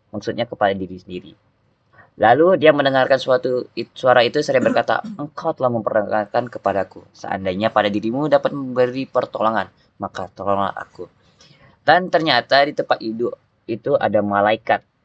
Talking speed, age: 135 wpm, 20-39